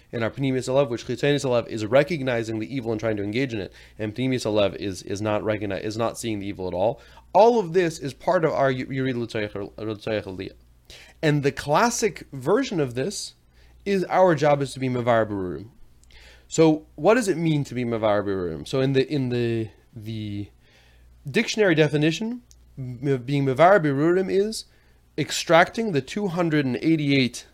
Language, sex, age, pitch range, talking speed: English, male, 30-49, 100-150 Hz, 155 wpm